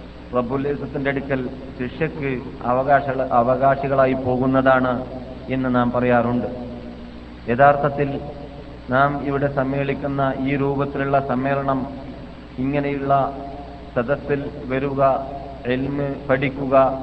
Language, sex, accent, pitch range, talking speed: Malayalam, male, native, 130-140 Hz, 75 wpm